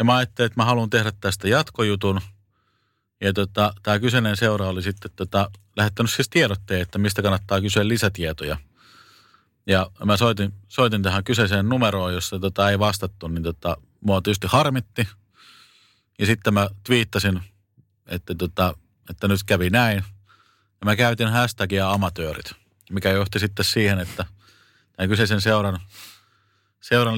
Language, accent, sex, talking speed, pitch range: Finnish, native, male, 145 wpm, 95-110 Hz